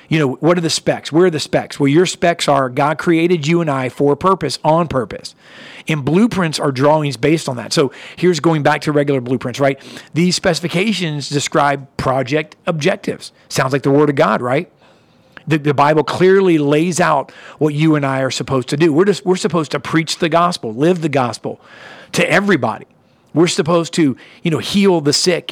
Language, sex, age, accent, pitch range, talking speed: English, male, 40-59, American, 140-170 Hz, 200 wpm